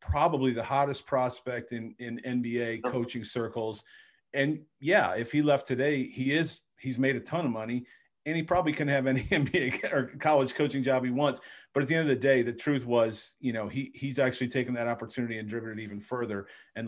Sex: male